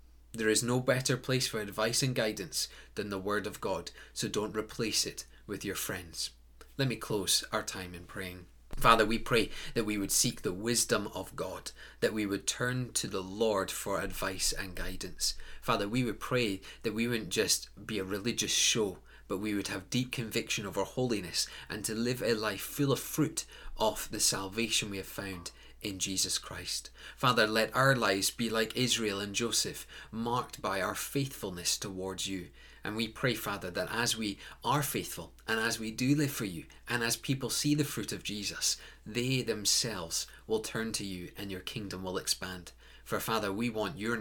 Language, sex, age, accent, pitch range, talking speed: English, male, 30-49, British, 95-120 Hz, 195 wpm